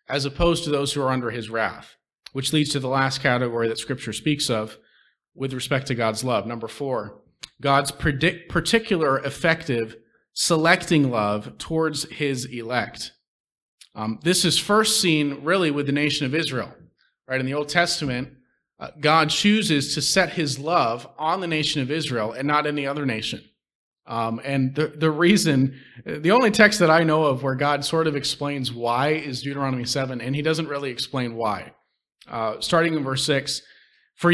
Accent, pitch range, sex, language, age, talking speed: American, 130-165 Hz, male, English, 30-49, 175 wpm